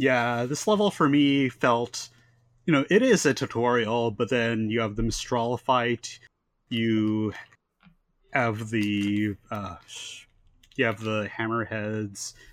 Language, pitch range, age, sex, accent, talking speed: English, 110-130 Hz, 30-49, male, American, 130 wpm